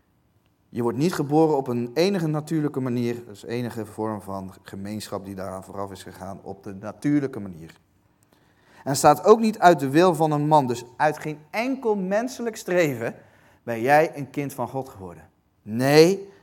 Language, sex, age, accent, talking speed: Dutch, male, 40-59, Dutch, 175 wpm